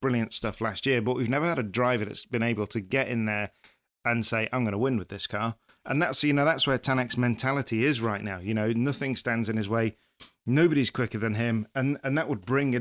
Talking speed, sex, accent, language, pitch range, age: 255 wpm, male, British, English, 110-130 Hz, 40-59